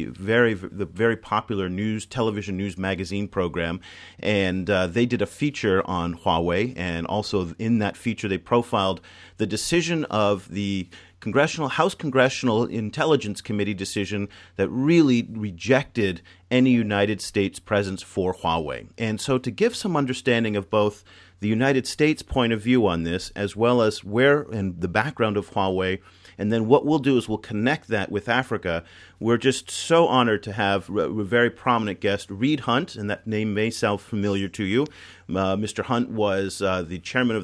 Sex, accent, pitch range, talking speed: male, American, 95-120 Hz, 170 wpm